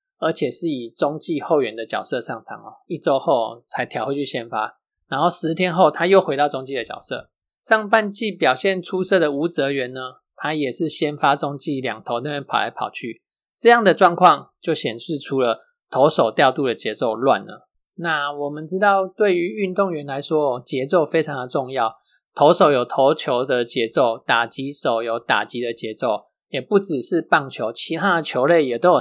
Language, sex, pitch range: Chinese, male, 135-190 Hz